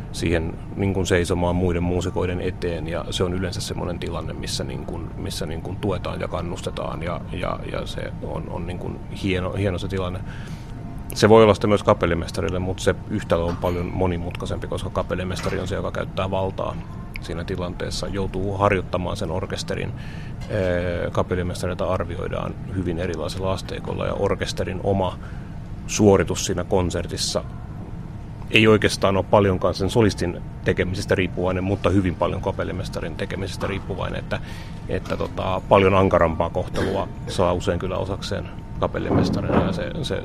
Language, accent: Finnish, native